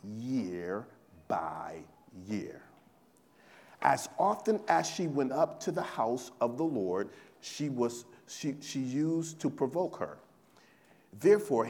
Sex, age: male, 40-59